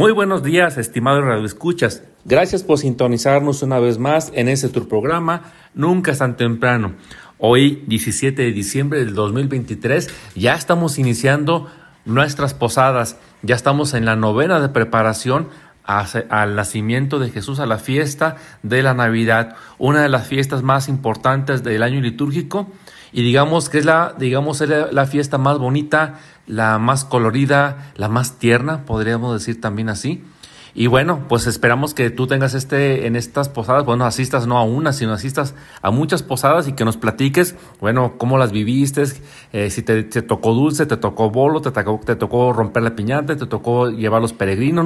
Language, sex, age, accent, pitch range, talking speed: Spanish, male, 40-59, Mexican, 115-150 Hz, 170 wpm